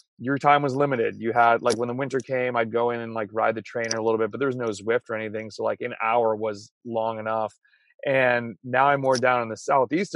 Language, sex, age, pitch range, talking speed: English, male, 30-49, 120-150 Hz, 260 wpm